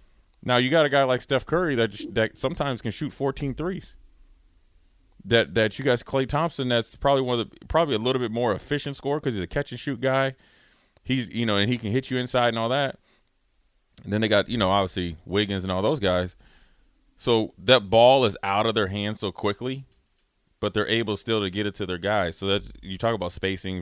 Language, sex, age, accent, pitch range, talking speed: English, male, 30-49, American, 90-125 Hz, 220 wpm